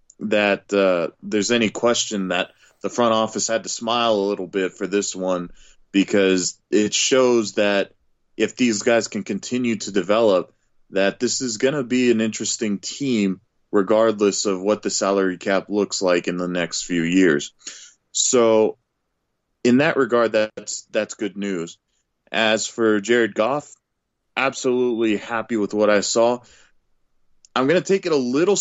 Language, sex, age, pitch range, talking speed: English, male, 20-39, 100-135 Hz, 160 wpm